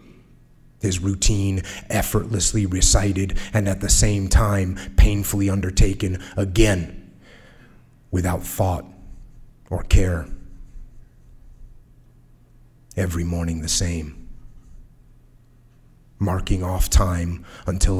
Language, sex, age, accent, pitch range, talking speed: English, male, 30-49, American, 85-110 Hz, 80 wpm